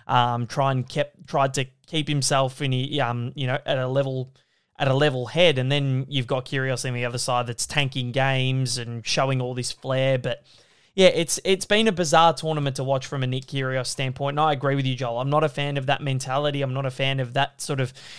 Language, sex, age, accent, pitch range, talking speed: English, male, 20-39, Australian, 130-155 Hz, 240 wpm